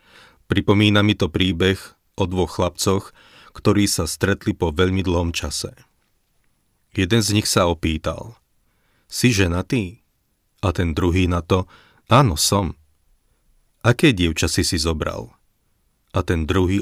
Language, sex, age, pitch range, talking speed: Slovak, male, 40-59, 85-105 Hz, 125 wpm